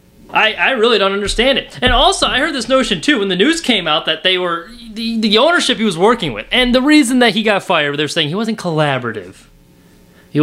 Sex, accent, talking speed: male, American, 235 wpm